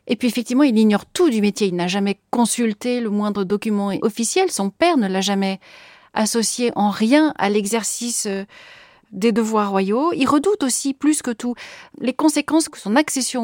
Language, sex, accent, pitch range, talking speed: French, female, French, 215-265 Hz, 185 wpm